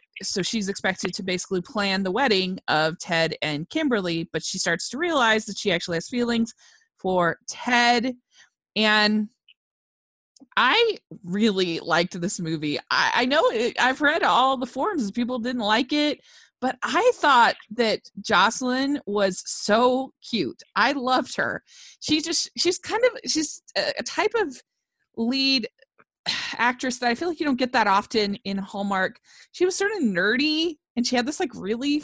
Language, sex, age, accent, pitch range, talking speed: English, female, 30-49, American, 200-310 Hz, 165 wpm